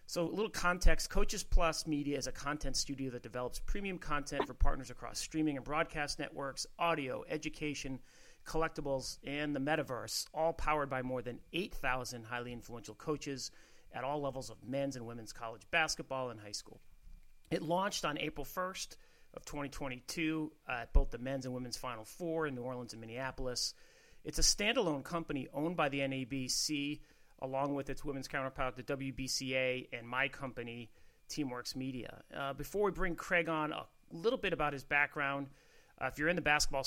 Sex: male